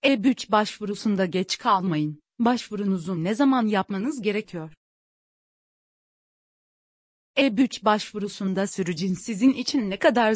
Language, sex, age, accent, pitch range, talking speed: Turkish, female, 30-49, native, 195-245 Hz, 105 wpm